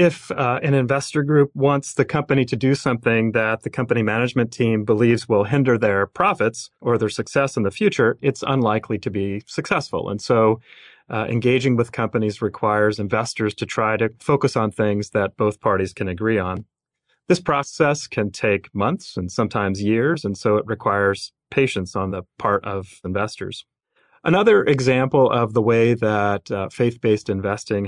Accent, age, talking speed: American, 30-49, 170 wpm